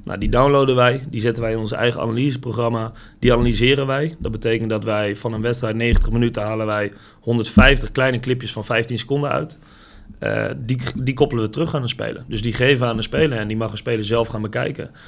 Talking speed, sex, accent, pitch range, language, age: 225 wpm, male, Dutch, 110-130 Hz, Dutch, 30-49